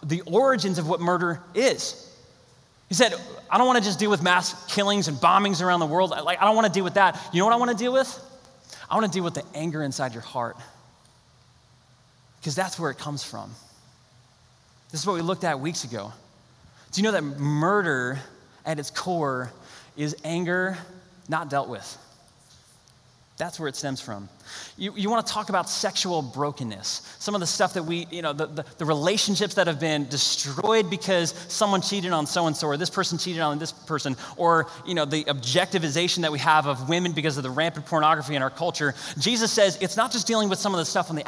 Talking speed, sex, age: 215 wpm, male, 20-39